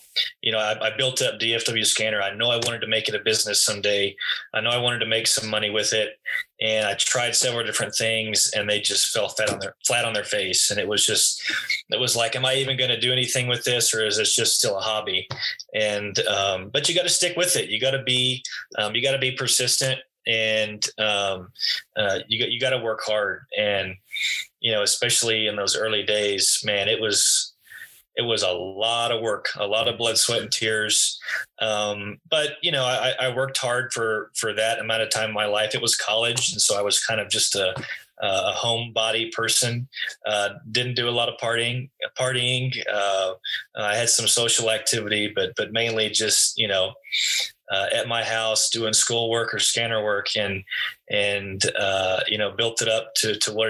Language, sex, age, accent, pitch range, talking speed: English, male, 20-39, American, 105-125 Hz, 210 wpm